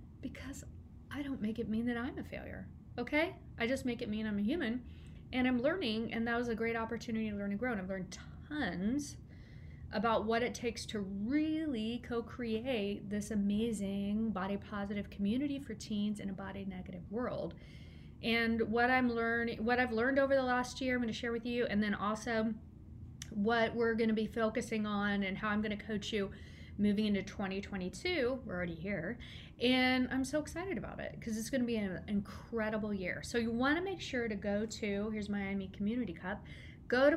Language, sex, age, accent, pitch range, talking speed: English, female, 40-59, American, 200-240 Hz, 195 wpm